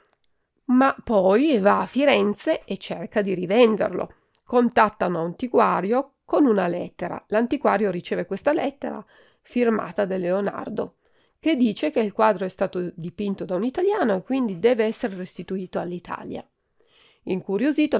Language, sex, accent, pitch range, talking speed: Italian, female, native, 185-245 Hz, 130 wpm